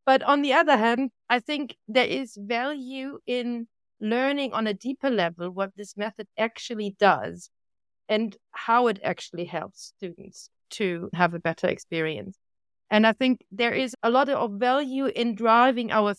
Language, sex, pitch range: English, female, 200-260 Hz